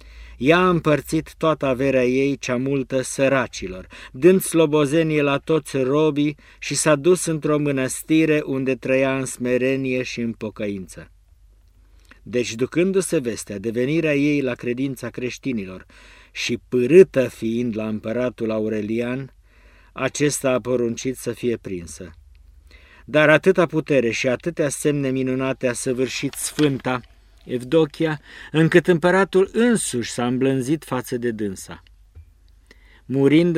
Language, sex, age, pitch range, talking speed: Romanian, male, 50-69, 110-135 Hz, 120 wpm